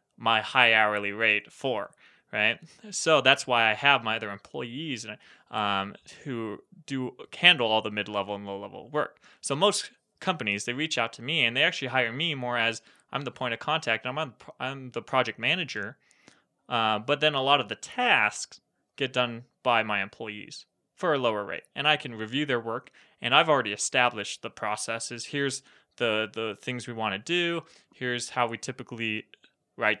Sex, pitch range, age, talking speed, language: male, 110-135 Hz, 20-39, 190 wpm, English